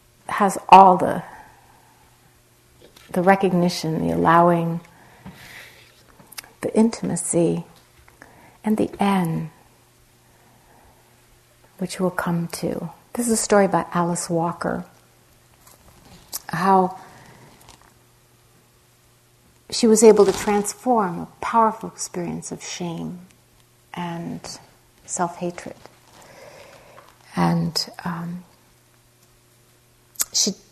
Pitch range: 170-195 Hz